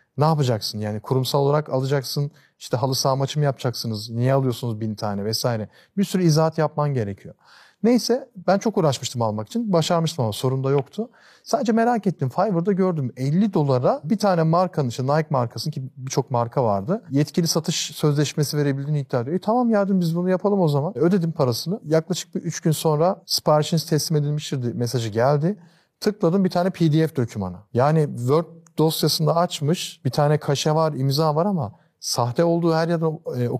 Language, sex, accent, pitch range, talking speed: Turkish, male, native, 125-170 Hz, 170 wpm